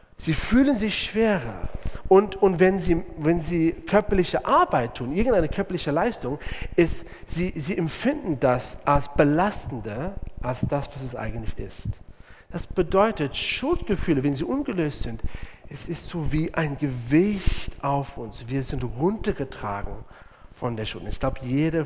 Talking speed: 140 wpm